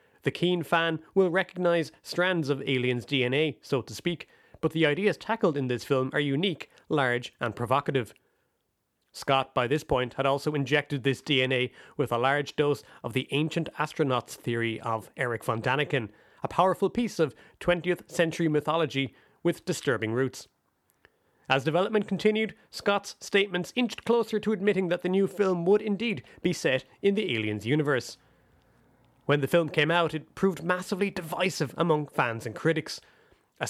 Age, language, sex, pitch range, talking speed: 30-49, English, male, 135-180 Hz, 160 wpm